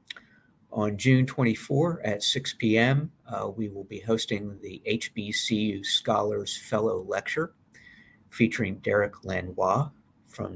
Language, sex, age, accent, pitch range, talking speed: English, male, 50-69, American, 105-135 Hz, 110 wpm